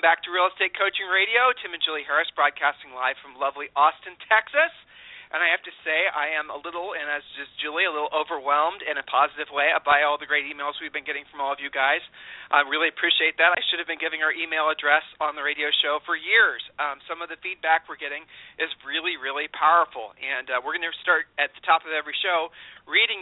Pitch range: 145-170 Hz